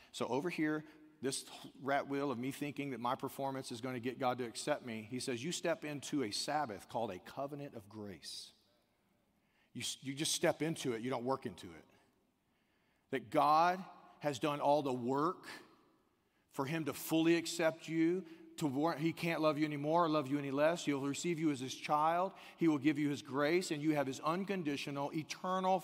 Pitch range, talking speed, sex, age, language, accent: 125-160 Hz, 195 wpm, male, 40-59, English, American